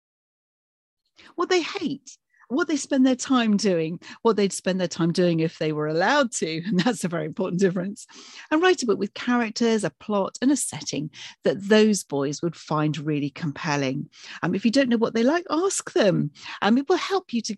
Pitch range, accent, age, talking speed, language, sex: 175-230 Hz, British, 40-59, 210 wpm, English, female